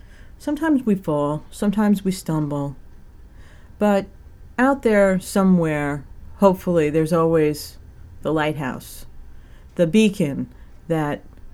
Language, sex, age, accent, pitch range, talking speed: English, female, 40-59, American, 145-195 Hz, 95 wpm